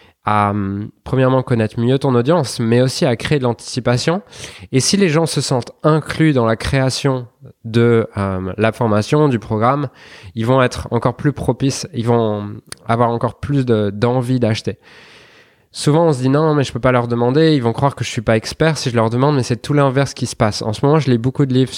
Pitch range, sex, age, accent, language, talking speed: 105-125 Hz, male, 20-39, French, French, 225 wpm